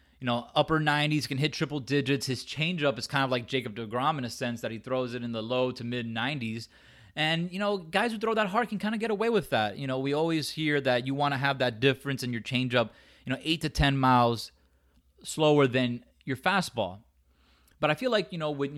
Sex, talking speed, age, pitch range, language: male, 245 wpm, 30-49, 120-150 Hz, English